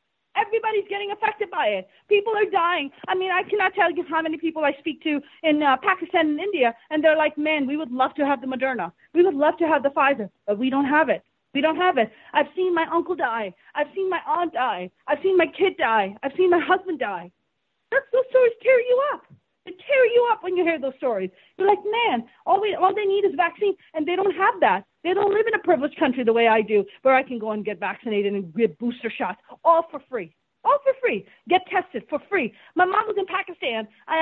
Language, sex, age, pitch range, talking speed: English, female, 30-49, 275-390 Hz, 245 wpm